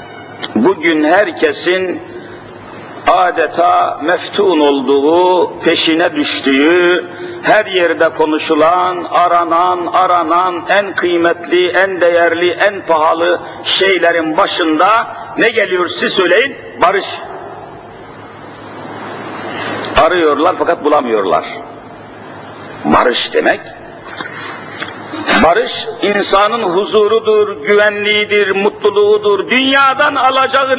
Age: 60-79